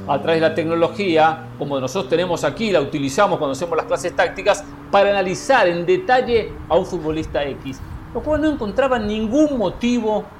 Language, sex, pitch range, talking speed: Spanish, male, 155-220 Hz, 175 wpm